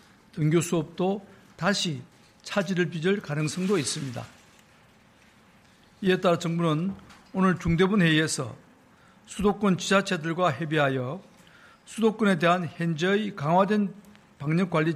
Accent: native